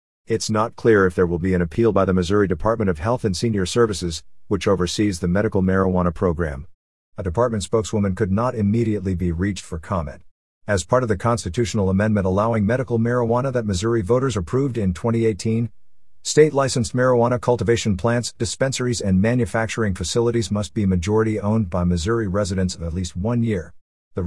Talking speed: 170 wpm